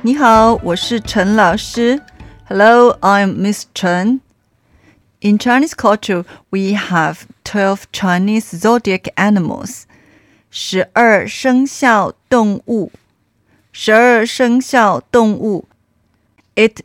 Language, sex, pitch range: Chinese, female, 185-230 Hz